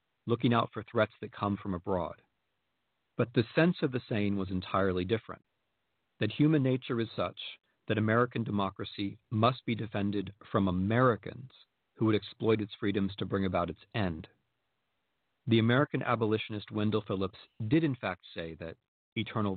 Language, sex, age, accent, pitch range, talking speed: English, male, 40-59, American, 95-120 Hz, 155 wpm